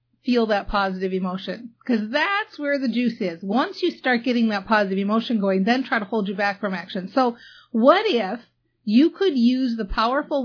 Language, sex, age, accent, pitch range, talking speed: English, female, 40-59, American, 195-265 Hz, 195 wpm